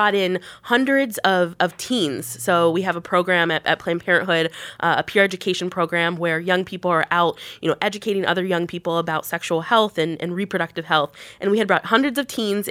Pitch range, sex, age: 175-210 Hz, female, 20-39